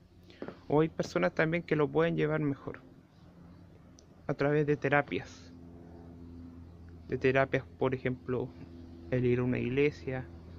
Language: Spanish